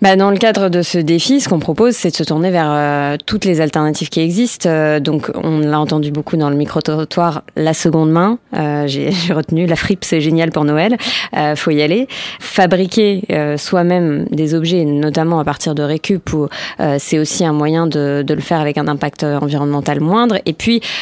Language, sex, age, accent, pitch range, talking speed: French, female, 20-39, French, 150-175 Hz, 210 wpm